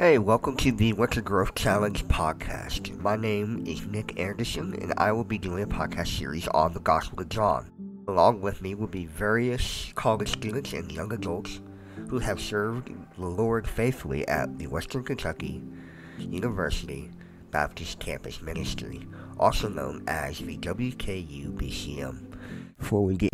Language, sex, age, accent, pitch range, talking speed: English, male, 50-69, American, 80-110 Hz, 150 wpm